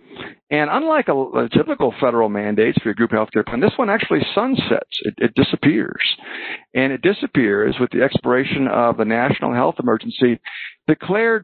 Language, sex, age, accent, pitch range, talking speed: English, male, 50-69, American, 110-130 Hz, 170 wpm